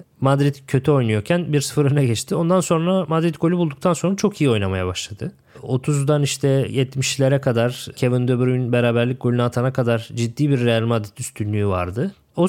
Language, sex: Turkish, male